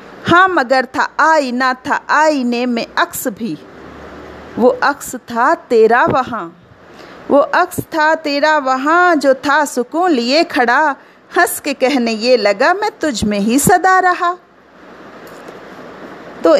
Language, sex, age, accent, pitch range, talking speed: Hindi, female, 40-59, native, 250-325 Hz, 135 wpm